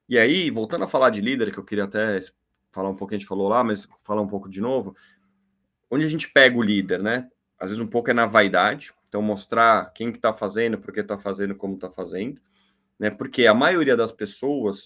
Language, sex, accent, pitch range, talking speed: Portuguese, male, Brazilian, 100-135 Hz, 230 wpm